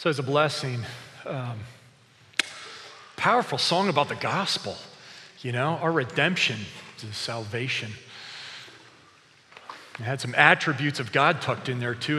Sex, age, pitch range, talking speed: male, 40-59, 125-155 Hz, 130 wpm